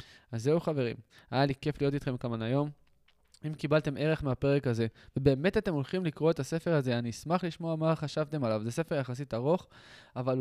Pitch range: 125-150 Hz